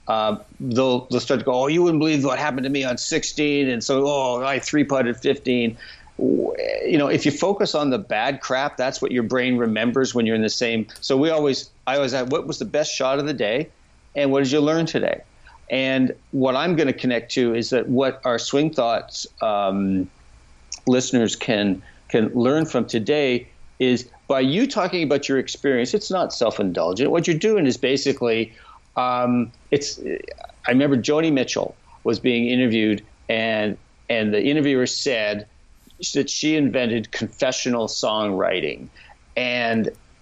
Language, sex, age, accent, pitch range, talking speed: English, male, 50-69, American, 120-150 Hz, 175 wpm